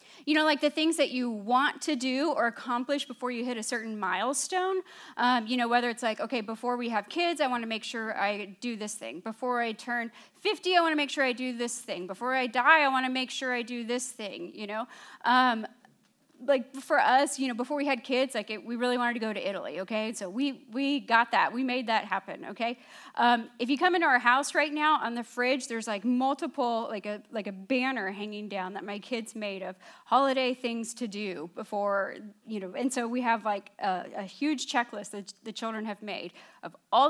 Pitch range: 210-270 Hz